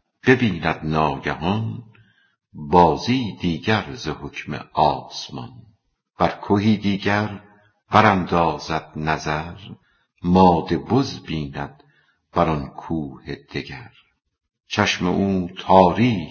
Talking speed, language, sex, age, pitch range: 75 wpm, Persian, female, 50-69, 80-110 Hz